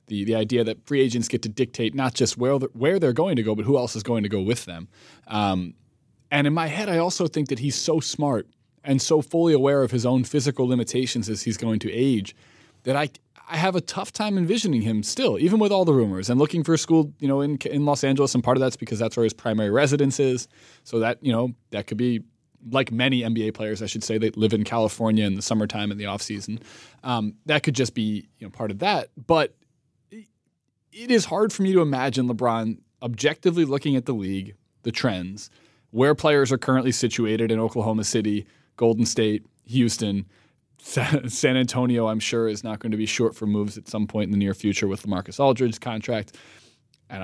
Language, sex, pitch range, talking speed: English, male, 110-145 Hz, 225 wpm